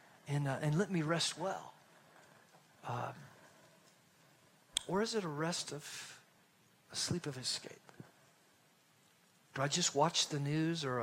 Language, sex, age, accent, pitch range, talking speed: English, male, 50-69, American, 140-180 Hz, 135 wpm